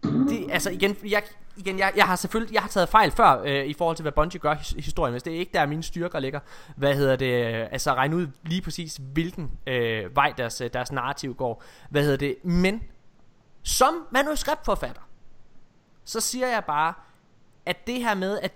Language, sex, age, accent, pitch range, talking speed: Danish, male, 20-39, native, 140-200 Hz, 195 wpm